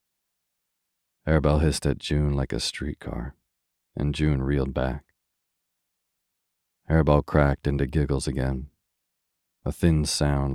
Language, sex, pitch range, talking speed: English, male, 65-75 Hz, 110 wpm